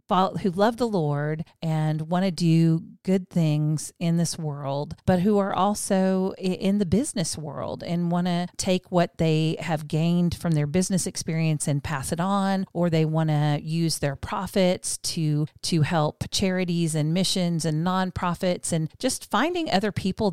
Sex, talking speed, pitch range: female, 170 wpm, 155-185 Hz